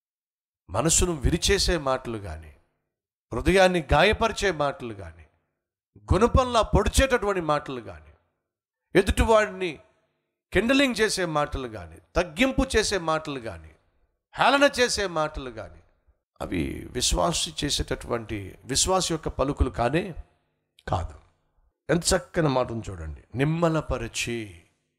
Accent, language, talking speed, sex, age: native, Telugu, 90 wpm, male, 60-79